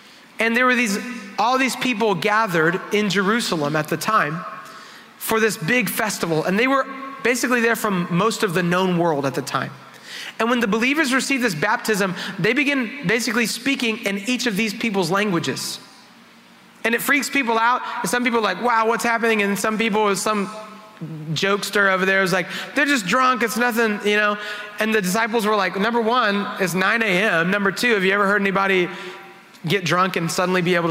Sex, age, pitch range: male, 30-49, 185-235 Hz